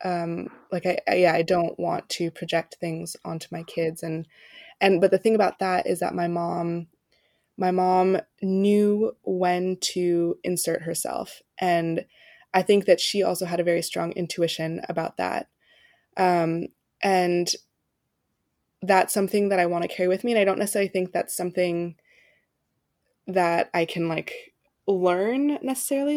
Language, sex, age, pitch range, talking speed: English, female, 20-39, 170-190 Hz, 160 wpm